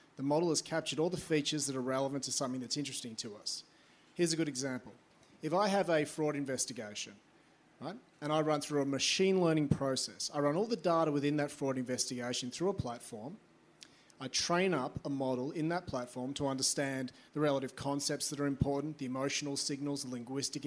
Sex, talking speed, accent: male, 195 wpm, Australian